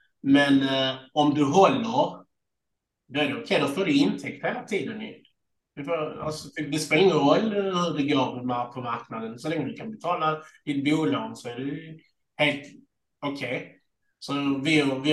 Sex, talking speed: male, 170 wpm